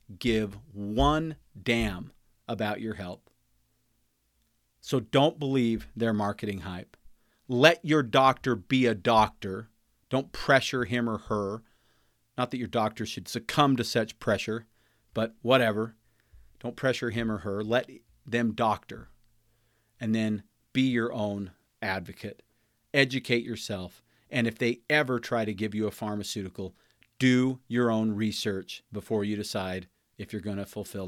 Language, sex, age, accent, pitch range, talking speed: English, male, 40-59, American, 105-120 Hz, 140 wpm